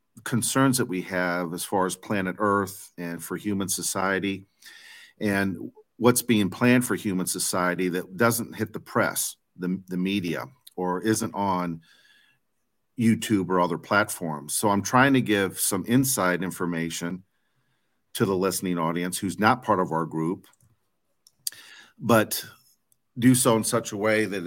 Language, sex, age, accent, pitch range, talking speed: English, male, 50-69, American, 90-110 Hz, 150 wpm